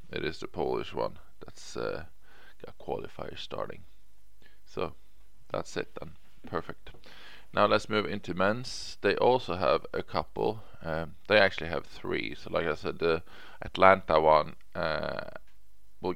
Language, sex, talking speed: English, male, 145 wpm